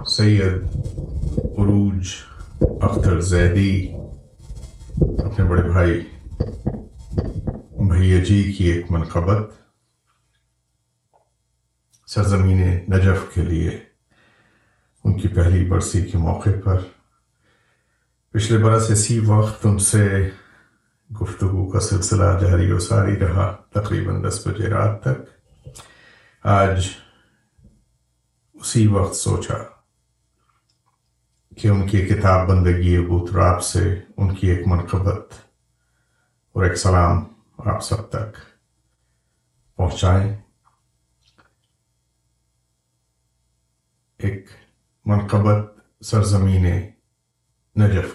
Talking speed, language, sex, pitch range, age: 85 wpm, Urdu, male, 90-110 Hz, 50-69